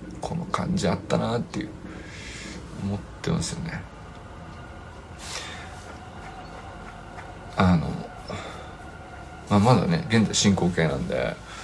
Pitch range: 90-125 Hz